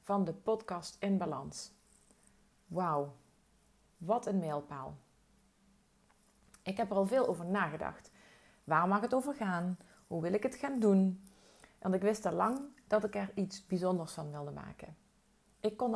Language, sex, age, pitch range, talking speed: Dutch, female, 30-49, 175-220 Hz, 160 wpm